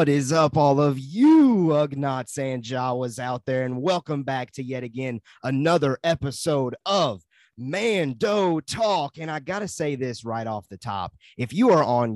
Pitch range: 120-150 Hz